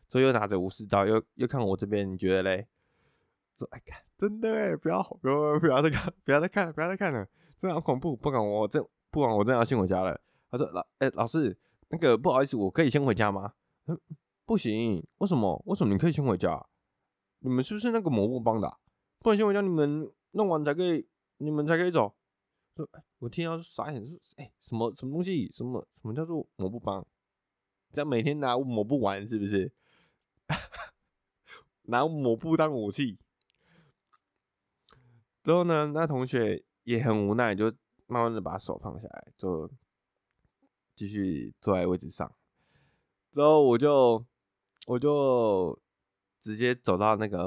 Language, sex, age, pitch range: Chinese, male, 20-39, 100-150 Hz